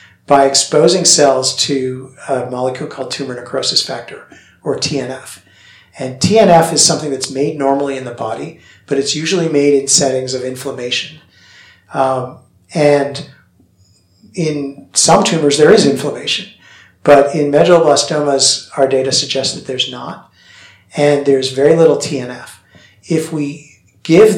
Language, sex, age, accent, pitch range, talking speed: English, male, 50-69, American, 130-150 Hz, 135 wpm